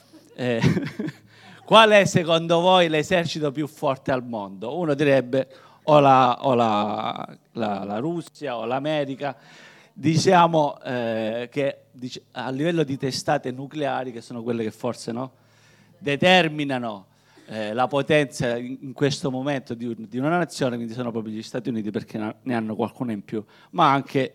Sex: male